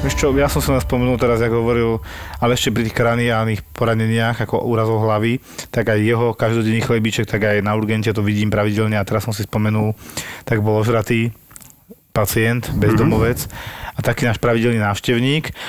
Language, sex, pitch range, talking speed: Slovak, male, 110-130 Hz, 170 wpm